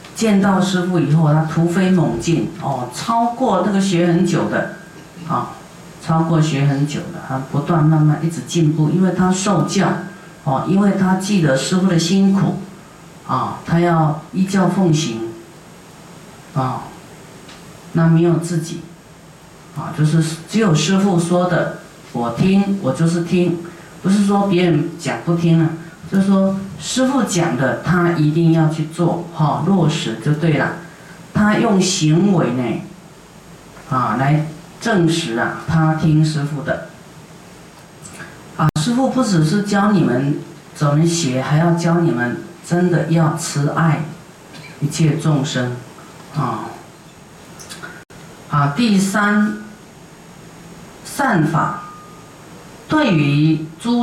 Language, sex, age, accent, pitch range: Chinese, female, 50-69, native, 155-185 Hz